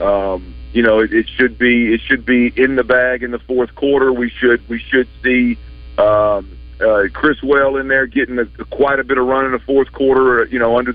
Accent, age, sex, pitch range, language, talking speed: American, 50-69, male, 115-135 Hz, English, 230 wpm